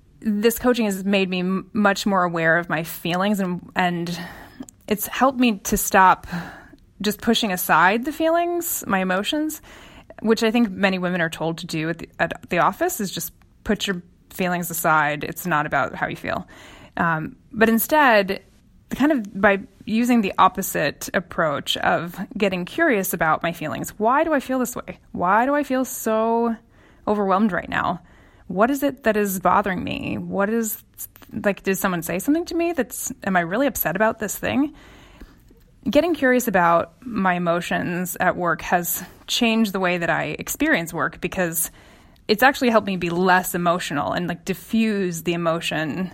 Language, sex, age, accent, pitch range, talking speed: English, female, 20-39, American, 175-230 Hz, 175 wpm